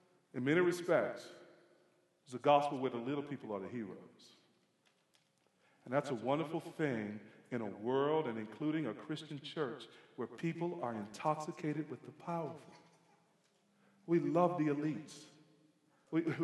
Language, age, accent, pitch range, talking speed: English, 40-59, American, 150-220 Hz, 140 wpm